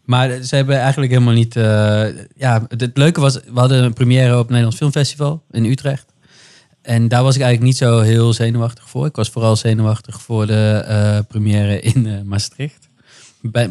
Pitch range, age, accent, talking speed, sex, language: 110-130 Hz, 20-39, Dutch, 190 wpm, male, Dutch